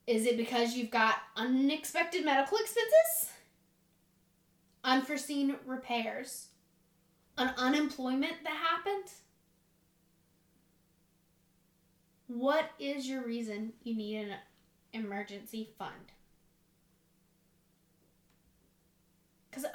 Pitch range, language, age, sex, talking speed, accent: 210-275 Hz, English, 10-29, female, 75 wpm, American